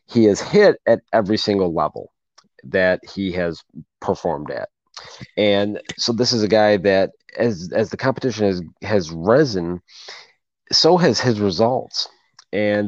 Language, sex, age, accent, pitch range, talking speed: English, male, 40-59, American, 95-120 Hz, 145 wpm